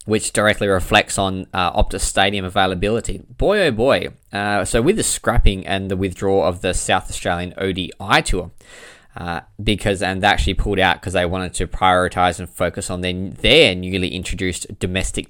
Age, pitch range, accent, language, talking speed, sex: 20-39, 95-110 Hz, Australian, English, 175 wpm, male